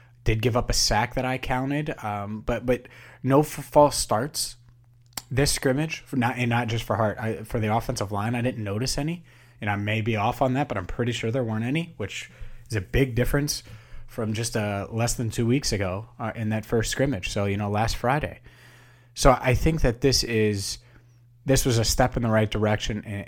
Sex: male